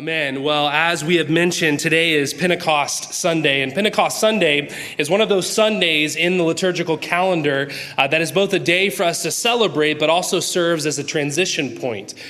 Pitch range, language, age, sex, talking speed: 145-180 Hz, English, 20-39, male, 190 wpm